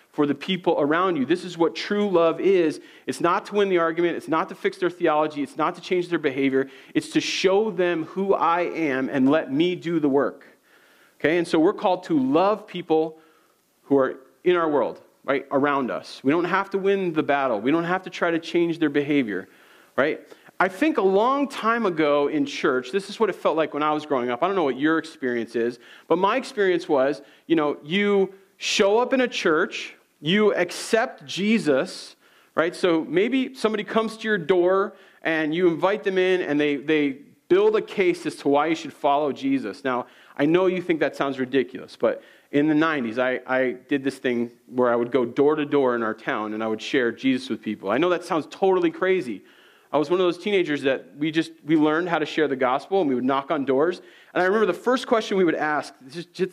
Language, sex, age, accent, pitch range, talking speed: English, male, 40-59, American, 145-195 Hz, 225 wpm